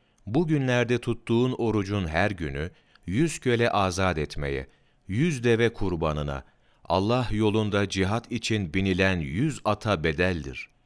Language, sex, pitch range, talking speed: Turkish, male, 95-125 Hz, 115 wpm